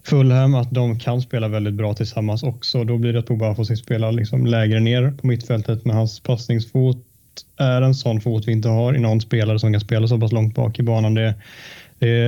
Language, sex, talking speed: Swedish, male, 225 wpm